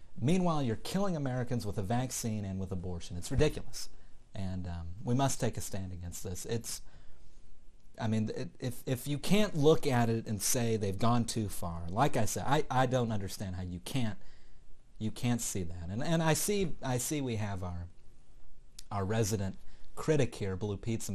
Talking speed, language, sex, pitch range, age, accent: 190 wpm, English, male, 95-125 Hz, 40-59, American